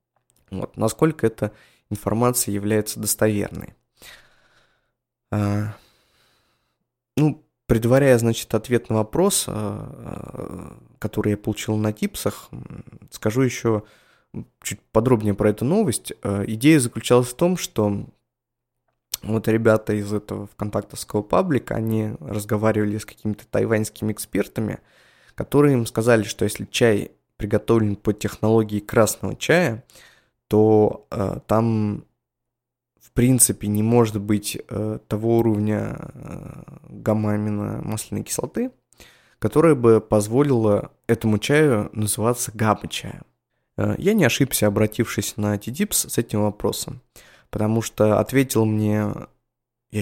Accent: native